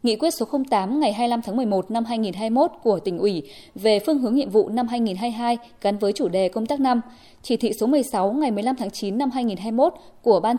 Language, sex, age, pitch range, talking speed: Vietnamese, female, 20-39, 195-270 Hz, 220 wpm